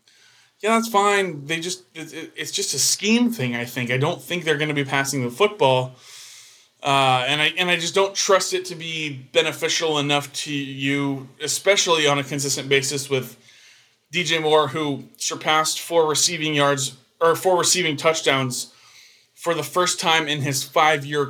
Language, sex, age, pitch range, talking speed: English, male, 20-39, 135-175 Hz, 170 wpm